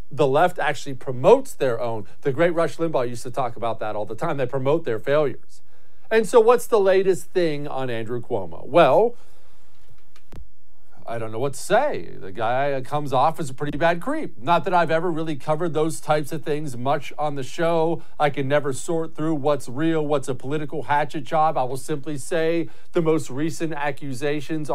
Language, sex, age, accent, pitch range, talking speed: English, male, 50-69, American, 135-170 Hz, 195 wpm